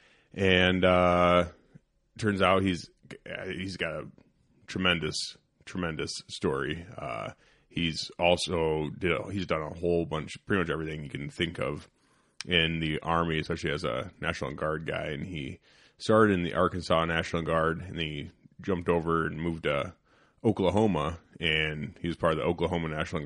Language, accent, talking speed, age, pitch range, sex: English, American, 155 wpm, 30-49, 80-90 Hz, male